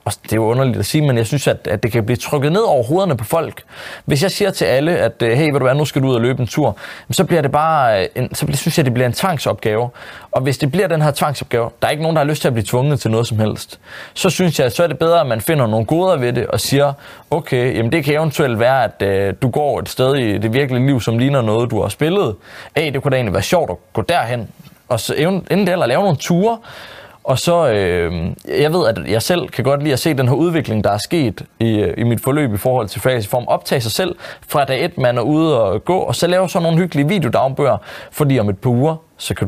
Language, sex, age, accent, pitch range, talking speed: Danish, male, 20-39, native, 115-150 Hz, 275 wpm